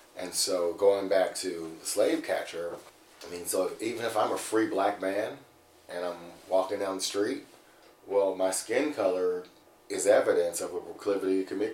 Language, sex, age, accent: English, male, 40-59, American